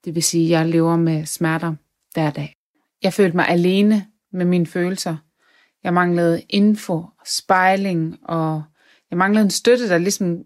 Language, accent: Danish, native